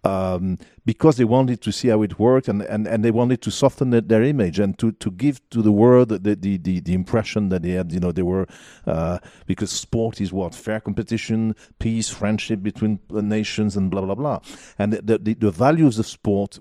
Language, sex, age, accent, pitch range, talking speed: English, male, 50-69, French, 100-120 Hz, 220 wpm